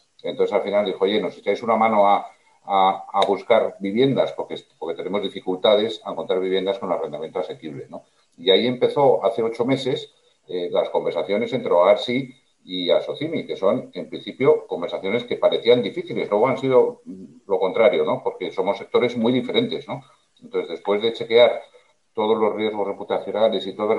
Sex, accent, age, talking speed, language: male, Spanish, 50-69, 175 wpm, Spanish